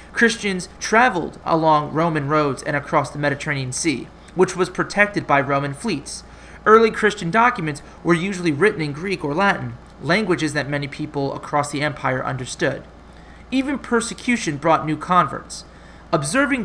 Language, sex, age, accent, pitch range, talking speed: English, male, 30-49, American, 150-200 Hz, 145 wpm